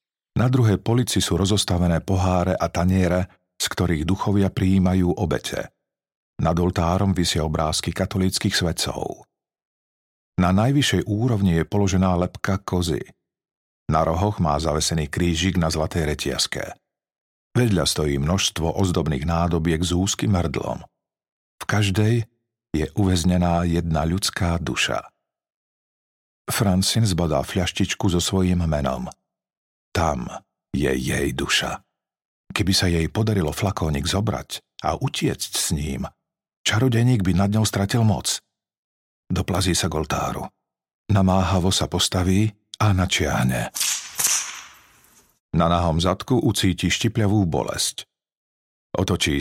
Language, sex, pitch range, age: Slovak, male, 85-105 Hz, 50-69